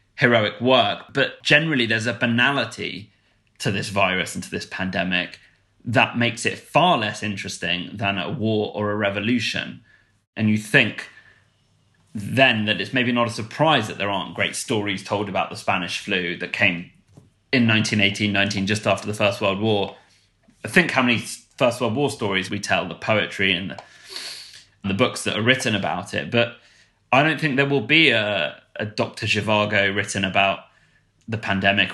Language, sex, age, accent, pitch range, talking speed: English, male, 20-39, British, 100-120 Hz, 175 wpm